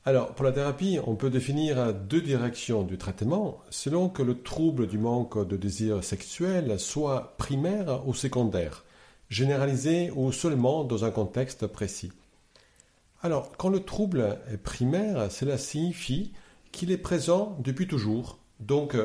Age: 50-69